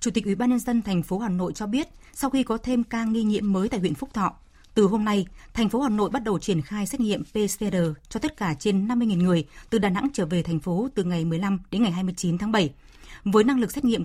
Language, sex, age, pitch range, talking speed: Vietnamese, female, 20-39, 180-230 Hz, 275 wpm